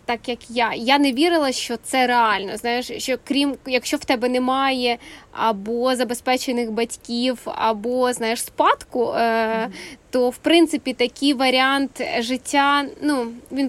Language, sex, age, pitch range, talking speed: Ukrainian, female, 20-39, 240-280 Hz, 130 wpm